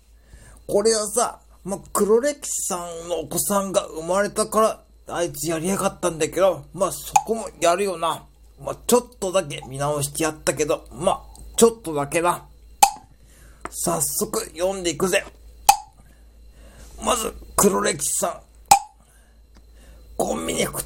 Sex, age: male, 40-59